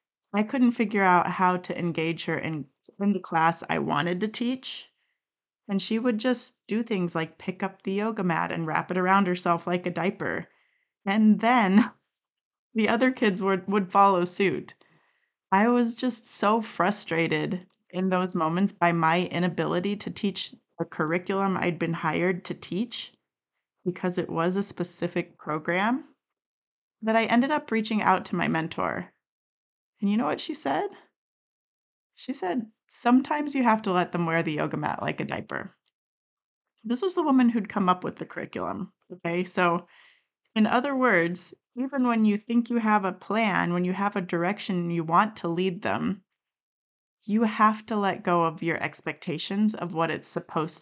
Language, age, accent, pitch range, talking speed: English, 30-49, American, 175-230 Hz, 170 wpm